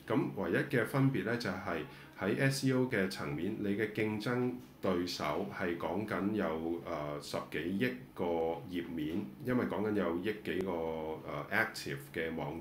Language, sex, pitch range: Chinese, male, 85-115 Hz